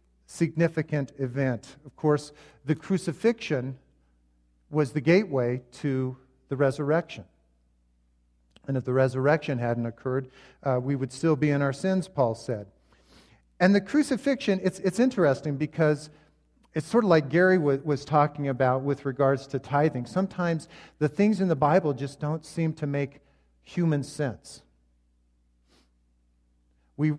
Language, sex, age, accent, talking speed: English, male, 50-69, American, 135 wpm